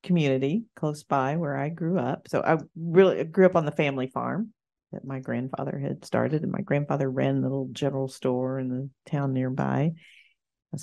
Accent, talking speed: American, 190 wpm